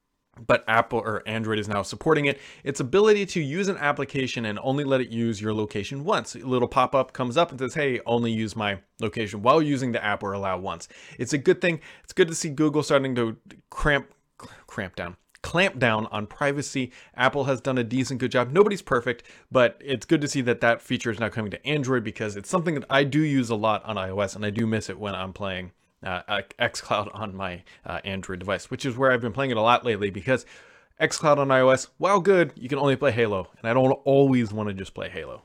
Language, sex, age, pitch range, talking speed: English, male, 30-49, 110-145 Hz, 230 wpm